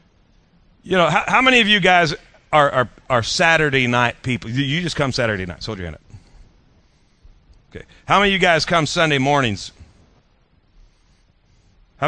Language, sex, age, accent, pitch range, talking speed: English, male, 40-59, American, 130-180 Hz, 170 wpm